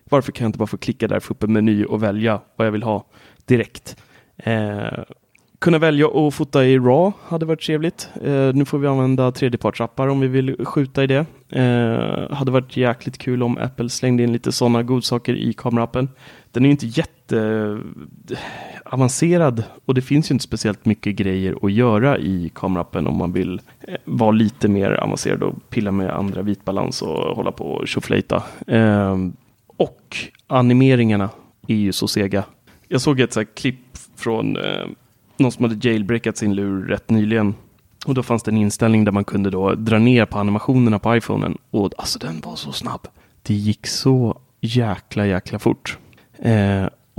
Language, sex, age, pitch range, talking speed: Swedish, male, 30-49, 105-130 Hz, 180 wpm